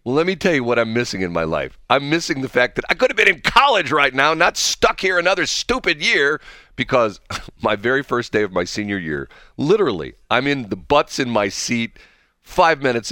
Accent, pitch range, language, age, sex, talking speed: American, 100-150 Hz, English, 40-59, male, 220 wpm